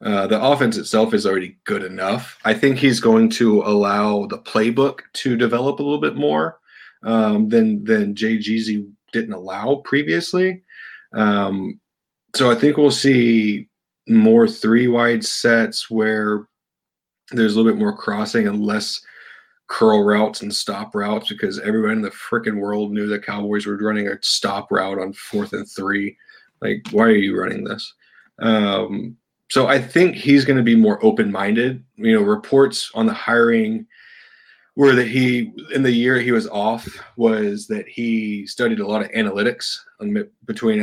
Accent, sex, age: American, male, 30-49